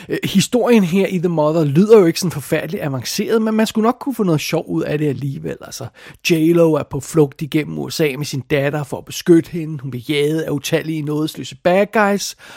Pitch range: 150-190 Hz